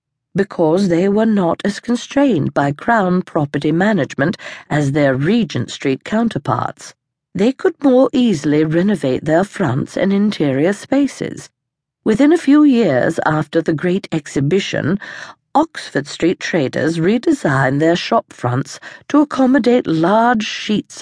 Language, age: English, 50-69